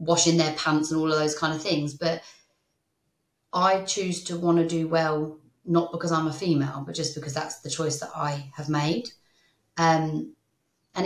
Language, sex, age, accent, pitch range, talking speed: English, female, 30-49, British, 150-175 Hz, 190 wpm